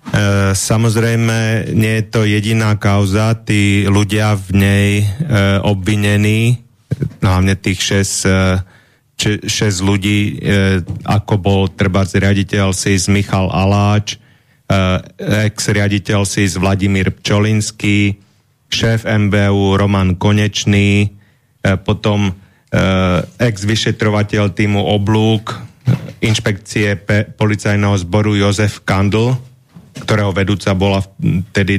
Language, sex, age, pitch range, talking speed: Slovak, male, 30-49, 100-110 Hz, 100 wpm